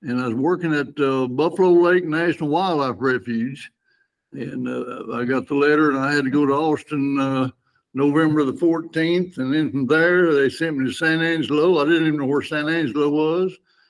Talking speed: 200 wpm